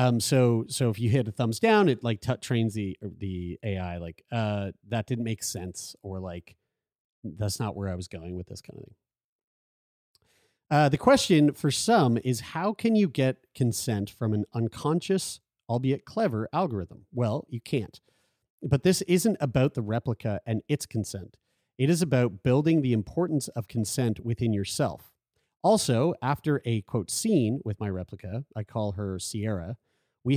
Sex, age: male, 40-59